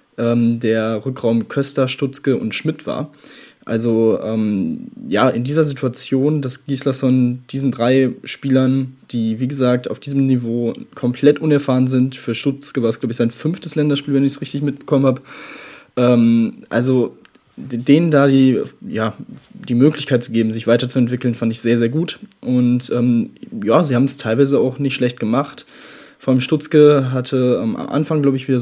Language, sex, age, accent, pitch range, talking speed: German, male, 20-39, German, 120-140 Hz, 170 wpm